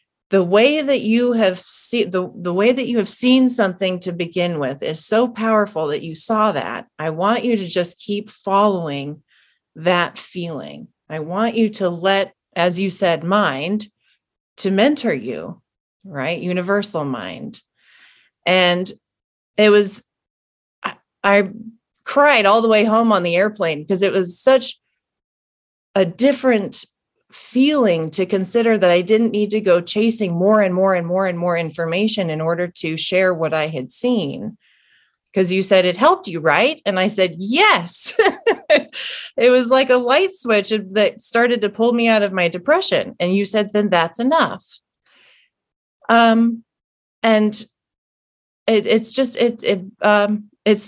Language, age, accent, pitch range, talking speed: English, 30-49, American, 175-225 Hz, 160 wpm